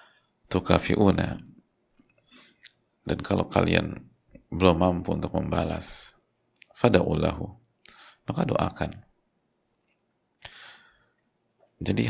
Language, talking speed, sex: Indonesian, 65 wpm, male